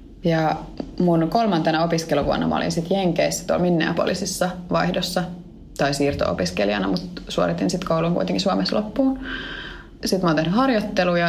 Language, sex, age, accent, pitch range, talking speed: Finnish, female, 20-39, native, 155-195 Hz, 130 wpm